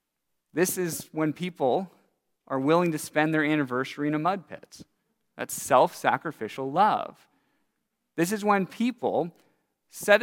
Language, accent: English, American